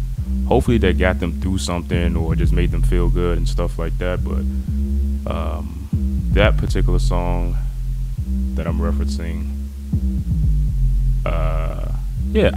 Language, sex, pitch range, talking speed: English, male, 75-115 Hz, 125 wpm